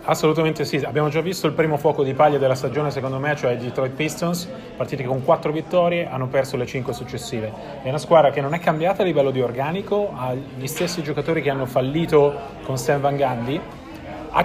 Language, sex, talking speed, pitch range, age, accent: Italian, male, 210 wpm, 130-160 Hz, 30-49, native